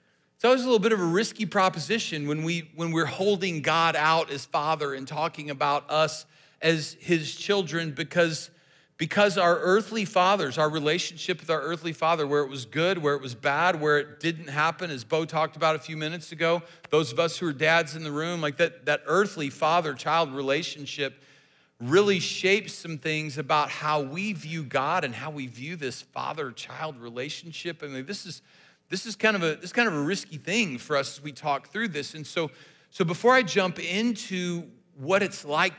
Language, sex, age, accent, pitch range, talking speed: English, male, 40-59, American, 145-175 Hz, 200 wpm